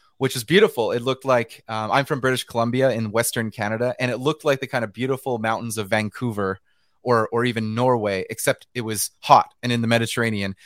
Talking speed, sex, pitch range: 210 wpm, male, 115-140 Hz